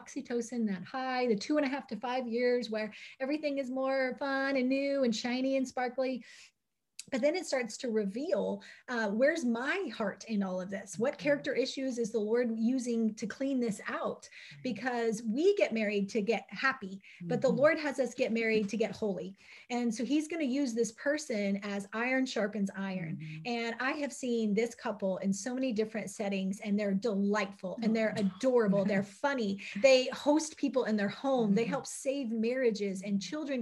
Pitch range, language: 220-270 Hz, English